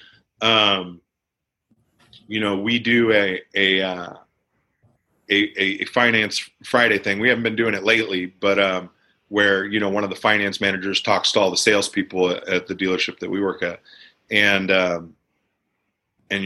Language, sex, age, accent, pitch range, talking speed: English, male, 40-59, American, 95-115 Hz, 160 wpm